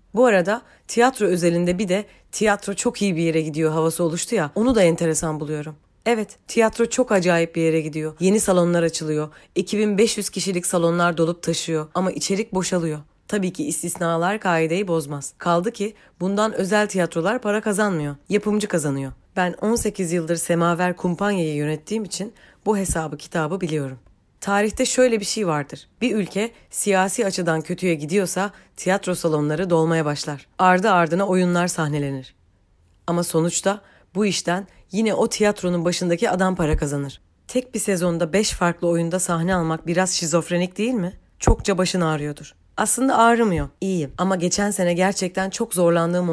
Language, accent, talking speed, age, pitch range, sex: Turkish, native, 150 wpm, 30-49, 160-200 Hz, female